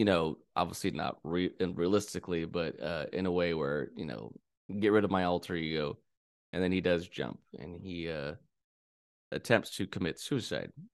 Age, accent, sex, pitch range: 20-39, American, male, 85-105 Hz